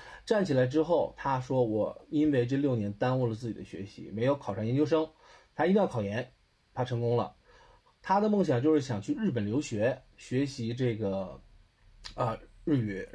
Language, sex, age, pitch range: Chinese, male, 20-39, 110-140 Hz